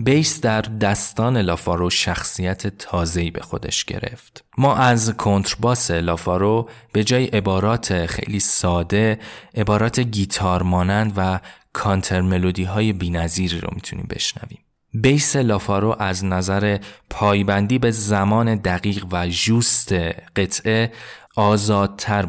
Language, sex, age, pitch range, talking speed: Persian, male, 20-39, 90-110 Hz, 105 wpm